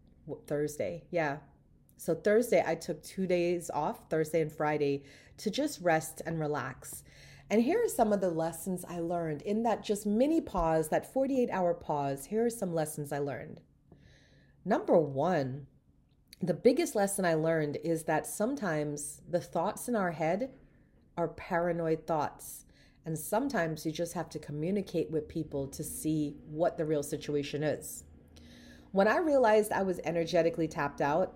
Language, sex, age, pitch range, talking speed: English, female, 40-59, 150-185 Hz, 155 wpm